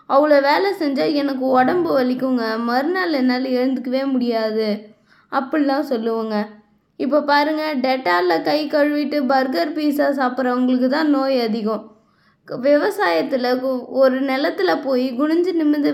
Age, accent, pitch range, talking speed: 20-39, native, 250-310 Hz, 110 wpm